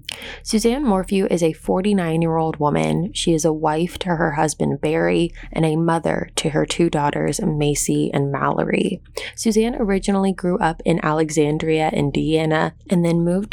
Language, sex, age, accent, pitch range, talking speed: English, female, 20-39, American, 155-190 Hz, 150 wpm